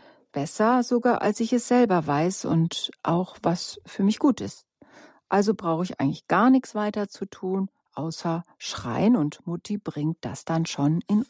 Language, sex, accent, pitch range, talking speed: German, female, German, 170-250 Hz, 170 wpm